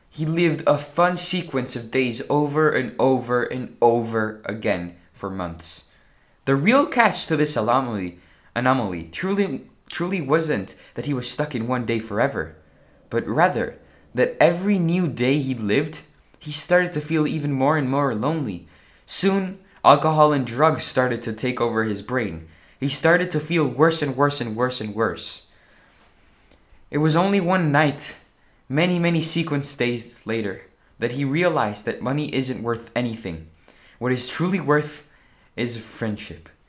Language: English